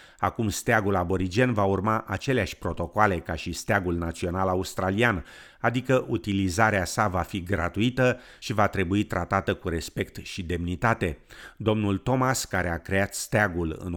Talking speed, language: 140 wpm, Romanian